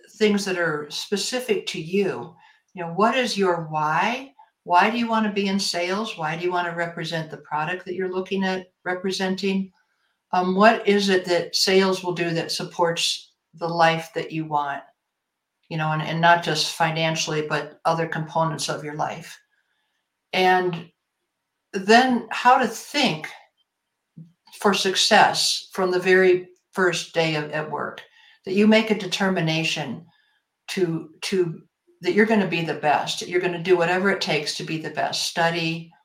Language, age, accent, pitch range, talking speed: English, 60-79, American, 160-195 Hz, 170 wpm